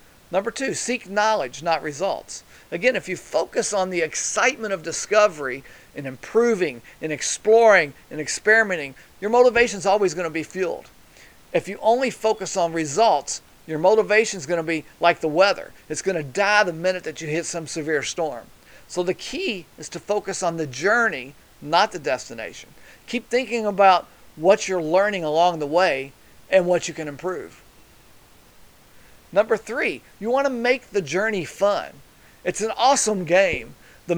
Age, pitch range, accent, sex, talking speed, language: 40-59, 165-220 Hz, American, male, 160 wpm, English